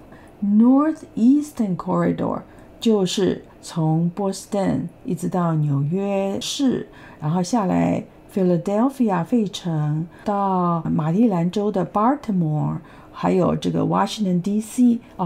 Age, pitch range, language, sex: 50-69, 175-255 Hz, Chinese, female